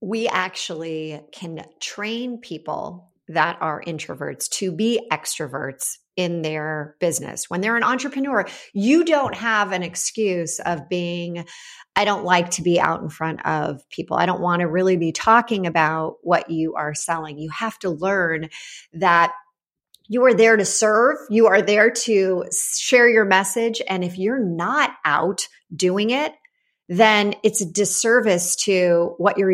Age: 40-59